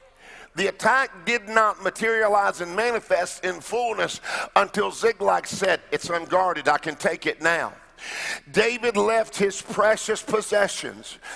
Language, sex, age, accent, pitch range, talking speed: English, male, 50-69, American, 205-235 Hz, 125 wpm